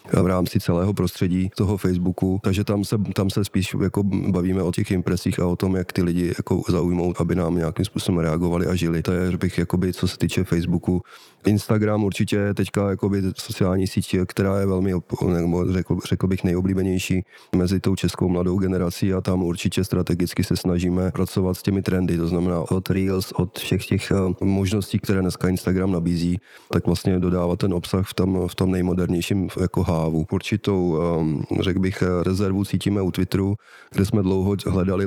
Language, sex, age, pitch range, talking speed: Czech, male, 30-49, 90-95 Hz, 175 wpm